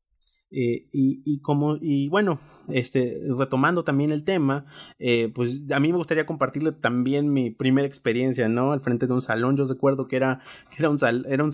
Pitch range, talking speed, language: 120-155 Hz, 200 wpm, Spanish